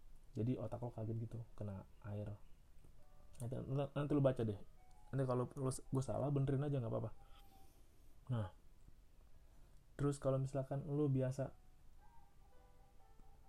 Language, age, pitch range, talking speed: Indonesian, 20-39, 110-130 Hz, 120 wpm